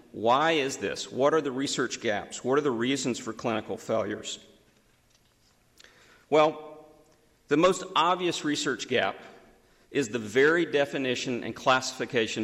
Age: 50-69